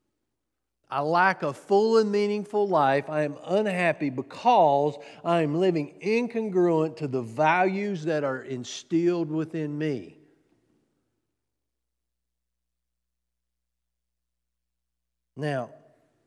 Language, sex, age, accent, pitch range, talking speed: English, male, 50-69, American, 130-195 Hz, 90 wpm